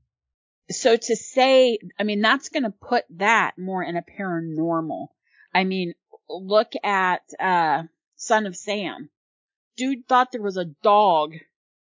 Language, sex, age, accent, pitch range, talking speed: English, female, 40-59, American, 170-240 Hz, 140 wpm